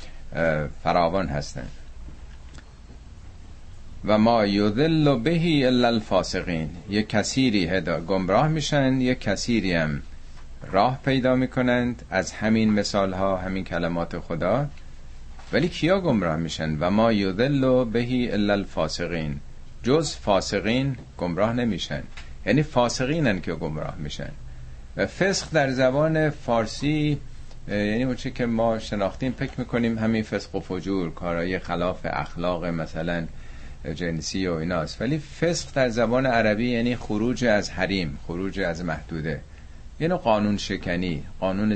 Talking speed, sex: 120 wpm, male